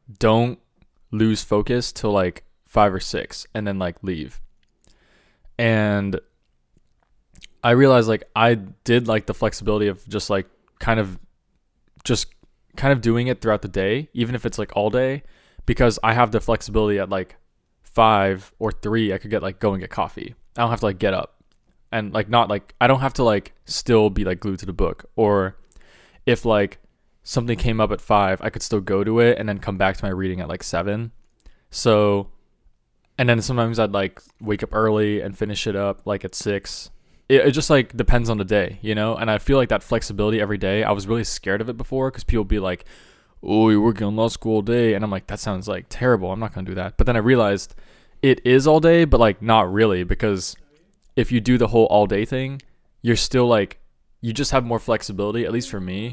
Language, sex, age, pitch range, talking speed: English, male, 20-39, 100-115 Hz, 215 wpm